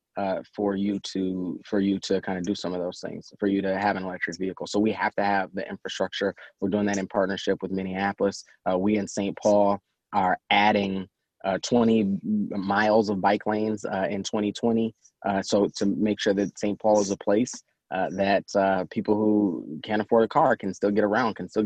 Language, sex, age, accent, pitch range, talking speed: English, male, 20-39, American, 95-105 Hz, 215 wpm